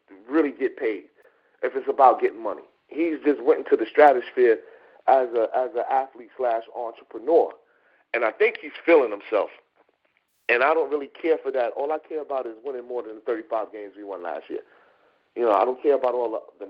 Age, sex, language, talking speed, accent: 40-59, male, English, 205 wpm, American